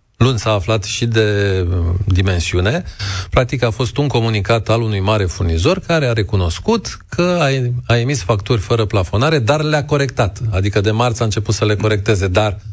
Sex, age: male, 40-59